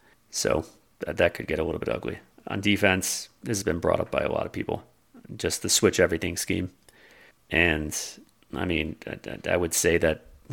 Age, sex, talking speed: 30-49, male, 180 wpm